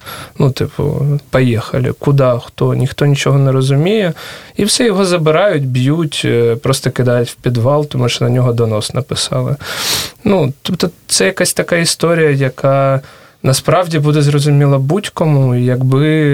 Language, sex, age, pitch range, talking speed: Russian, male, 20-39, 120-145 Hz, 135 wpm